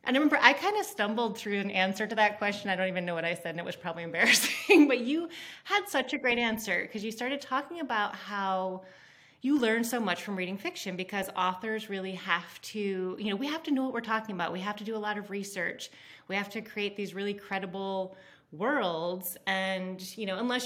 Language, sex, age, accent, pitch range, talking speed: English, female, 30-49, American, 170-220 Hz, 230 wpm